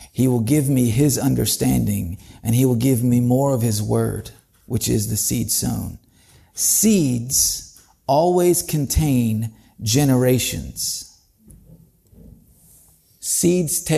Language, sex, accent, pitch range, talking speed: English, male, American, 115-160 Hz, 105 wpm